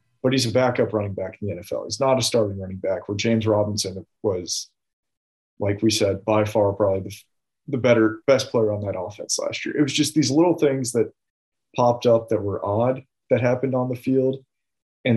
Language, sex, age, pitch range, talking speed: English, male, 30-49, 105-125 Hz, 210 wpm